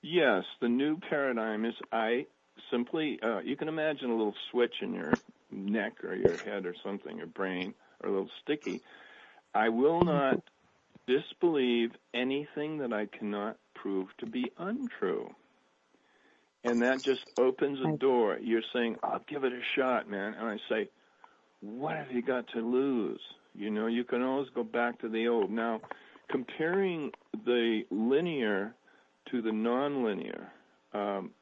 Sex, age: male, 50-69